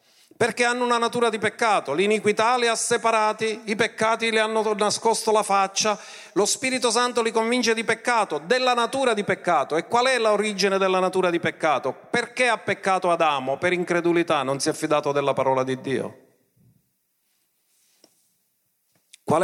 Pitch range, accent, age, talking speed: 155-225 Hz, native, 40-59, 155 wpm